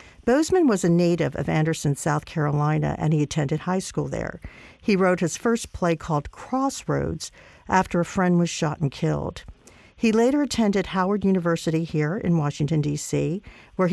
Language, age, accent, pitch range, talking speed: English, 50-69, American, 150-185 Hz, 165 wpm